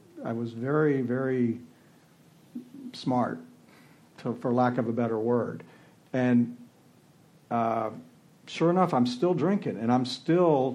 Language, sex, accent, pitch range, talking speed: English, male, American, 120-140 Hz, 125 wpm